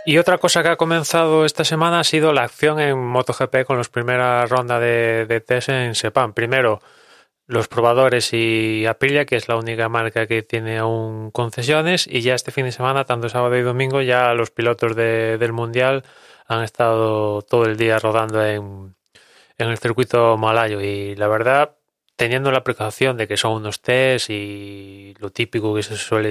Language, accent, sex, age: English, Spanish, male, 20-39